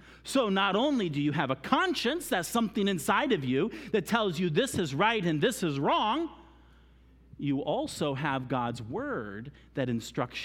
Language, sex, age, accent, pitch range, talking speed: English, male, 40-59, American, 120-200 Hz, 170 wpm